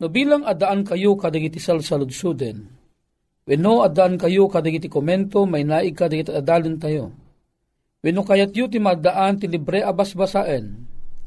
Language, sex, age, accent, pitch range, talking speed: Filipino, male, 40-59, native, 155-210 Hz, 150 wpm